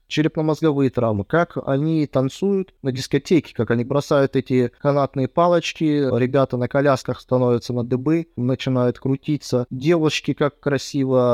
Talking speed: 125 wpm